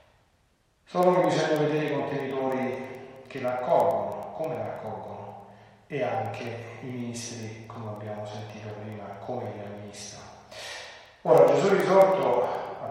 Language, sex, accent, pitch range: Italian, male, native, 110-130 Hz